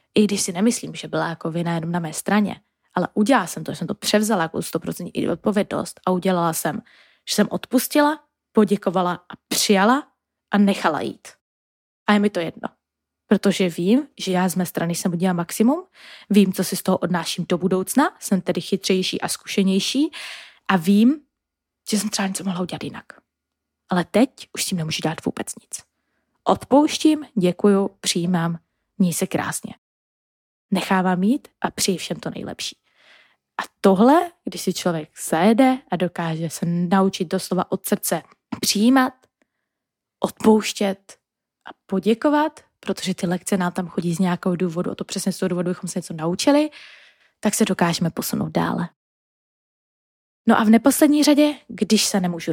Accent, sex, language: native, female, Czech